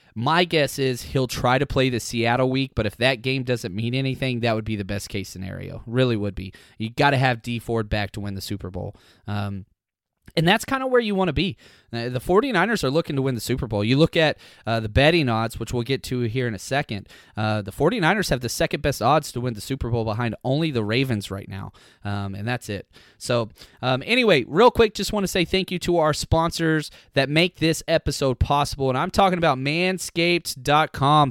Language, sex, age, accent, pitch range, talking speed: English, male, 20-39, American, 115-170 Hz, 230 wpm